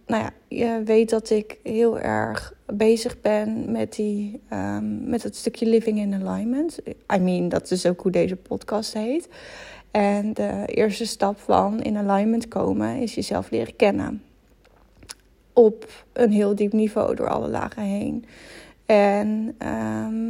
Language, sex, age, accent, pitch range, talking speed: Dutch, female, 10-29, Dutch, 205-240 Hz, 140 wpm